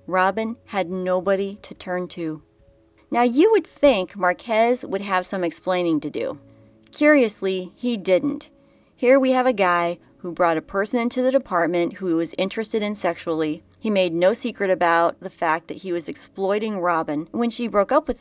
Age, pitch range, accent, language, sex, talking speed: 30-49, 170-215 Hz, American, English, female, 180 wpm